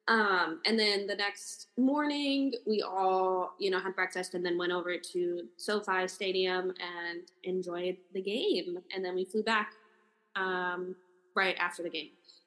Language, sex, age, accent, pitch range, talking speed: English, female, 20-39, American, 185-220 Hz, 160 wpm